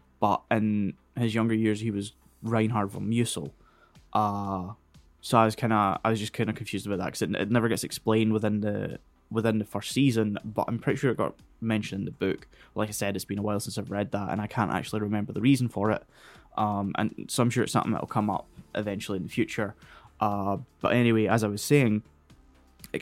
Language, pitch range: English, 100-115 Hz